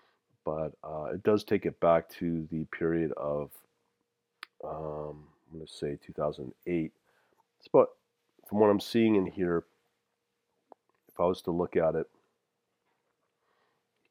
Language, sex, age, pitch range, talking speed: English, male, 40-59, 80-100 Hz, 130 wpm